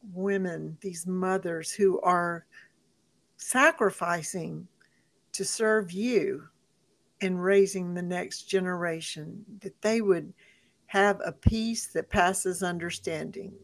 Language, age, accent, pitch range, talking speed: English, 60-79, American, 175-200 Hz, 100 wpm